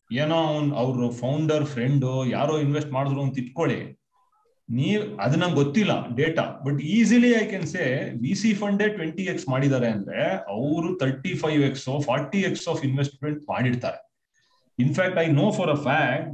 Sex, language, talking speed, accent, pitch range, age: male, Kannada, 105 wpm, native, 135-190 Hz, 30-49